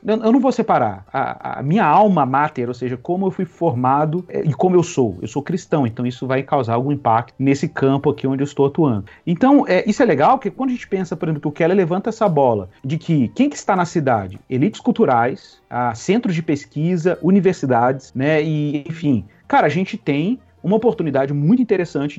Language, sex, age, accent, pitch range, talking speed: Portuguese, male, 40-59, Brazilian, 140-190 Hz, 205 wpm